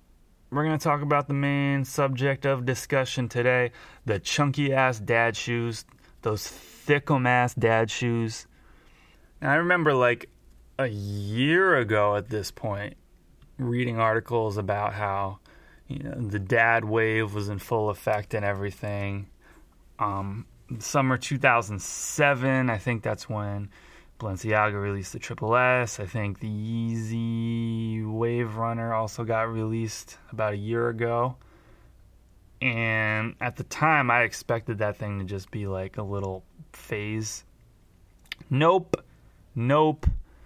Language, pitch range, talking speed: English, 100-125 Hz, 130 wpm